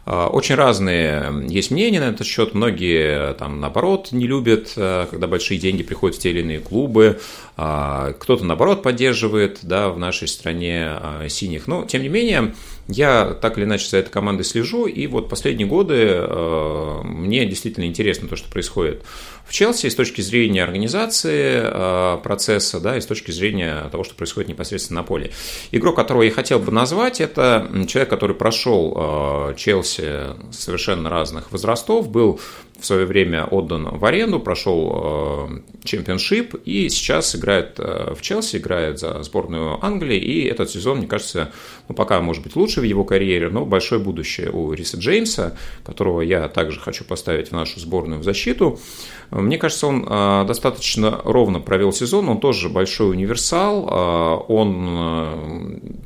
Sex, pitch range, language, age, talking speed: male, 85-115 Hz, Russian, 30-49, 155 wpm